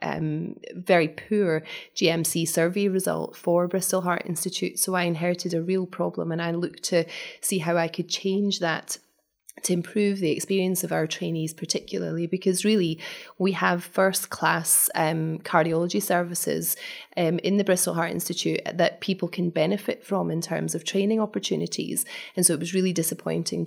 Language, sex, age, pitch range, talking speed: English, female, 20-39, 165-190 Hz, 160 wpm